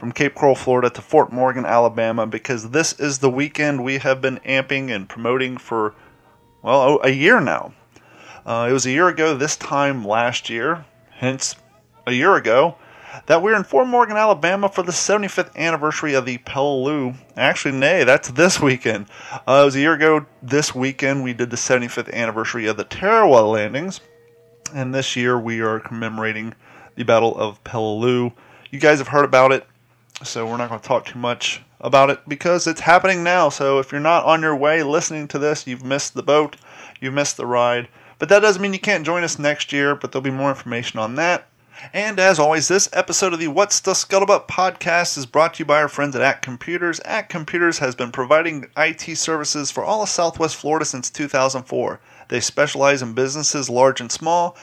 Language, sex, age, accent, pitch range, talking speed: English, male, 30-49, American, 125-165 Hz, 200 wpm